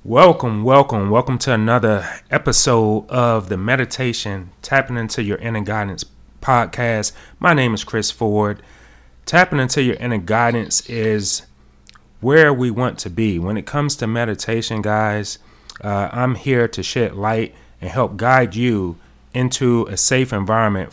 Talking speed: 145 wpm